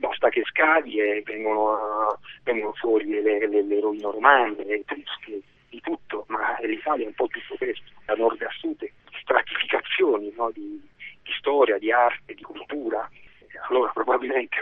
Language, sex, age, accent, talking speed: Italian, male, 40-59, native, 160 wpm